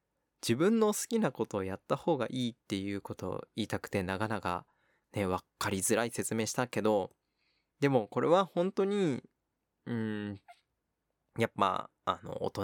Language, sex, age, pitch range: Japanese, male, 20-39, 100-130 Hz